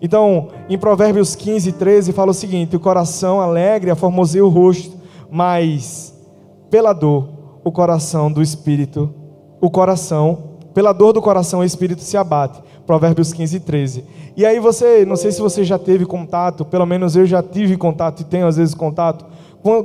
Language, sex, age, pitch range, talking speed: Portuguese, male, 20-39, 155-195 Hz, 170 wpm